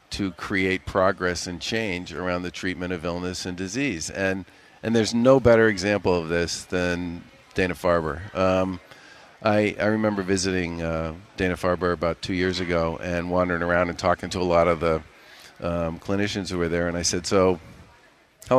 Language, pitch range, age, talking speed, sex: English, 85-100 Hz, 40-59, 170 wpm, male